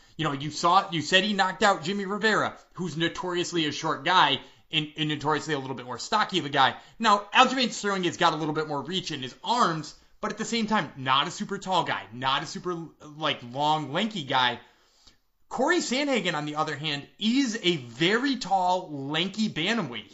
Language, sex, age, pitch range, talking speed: English, male, 20-39, 150-215 Hz, 205 wpm